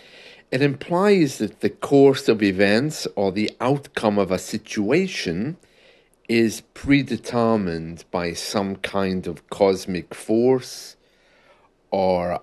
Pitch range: 100-140 Hz